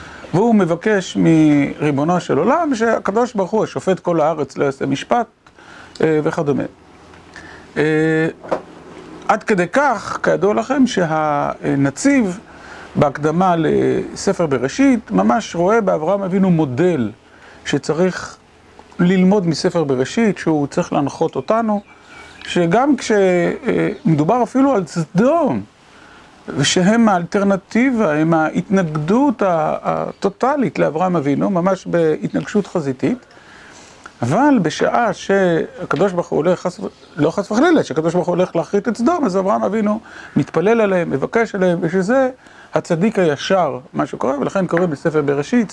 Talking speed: 115 wpm